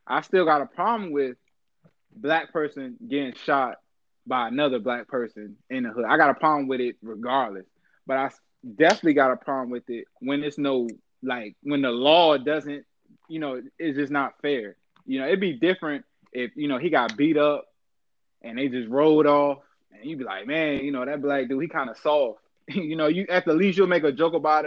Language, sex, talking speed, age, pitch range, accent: English, male, 210 wpm, 20-39, 130-180 Hz, American